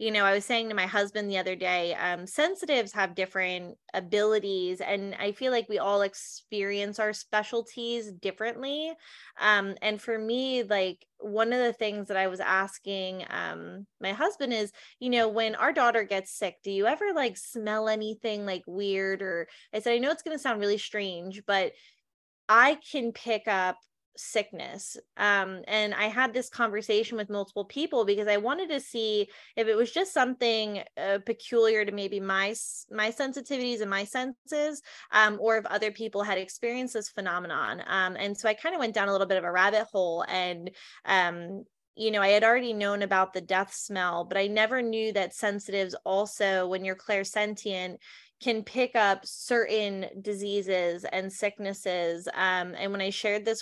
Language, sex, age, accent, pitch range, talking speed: English, female, 20-39, American, 195-225 Hz, 180 wpm